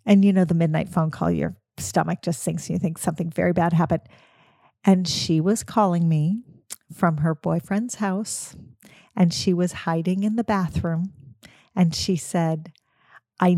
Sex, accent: female, American